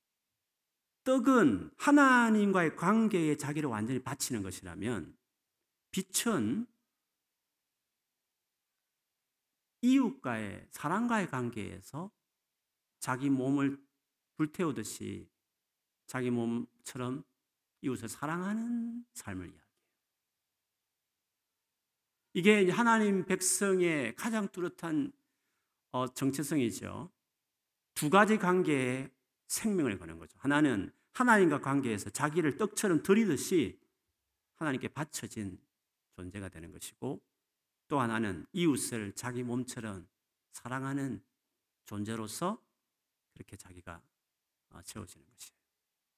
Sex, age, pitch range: male, 50-69, 110-185 Hz